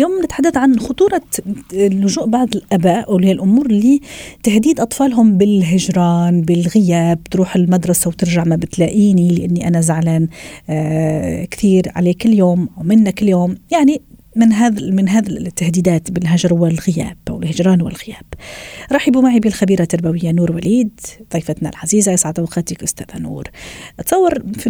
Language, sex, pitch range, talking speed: Arabic, female, 175-225 Hz, 125 wpm